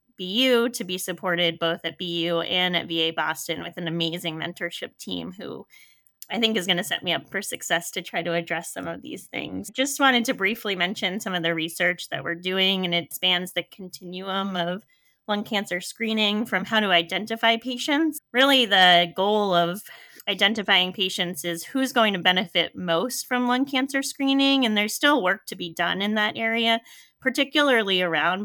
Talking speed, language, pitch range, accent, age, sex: 190 wpm, English, 175-225 Hz, American, 20-39, female